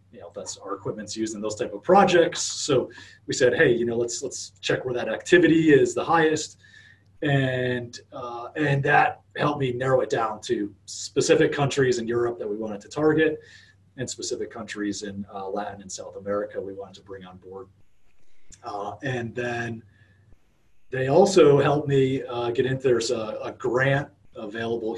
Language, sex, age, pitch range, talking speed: English, male, 30-49, 100-130 Hz, 180 wpm